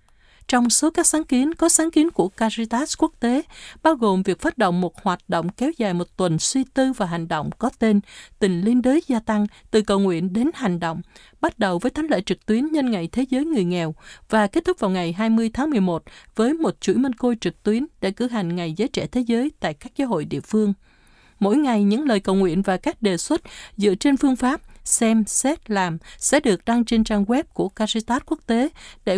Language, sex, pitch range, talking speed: Vietnamese, female, 185-260 Hz, 230 wpm